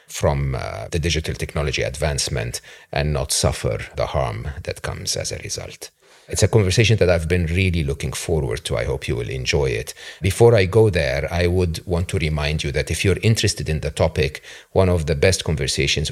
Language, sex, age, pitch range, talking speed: English, male, 40-59, 75-95 Hz, 200 wpm